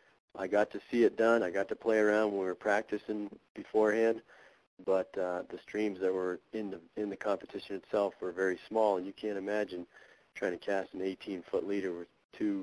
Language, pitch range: English, 95-110 Hz